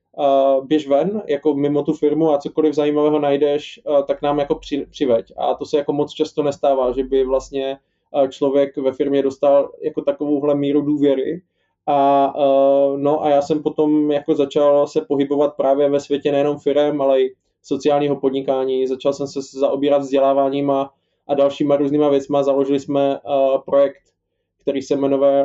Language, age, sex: Slovak, 20-39, male